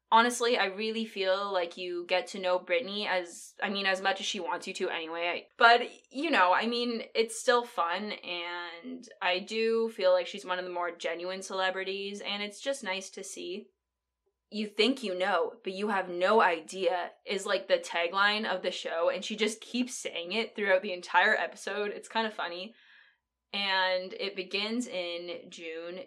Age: 10-29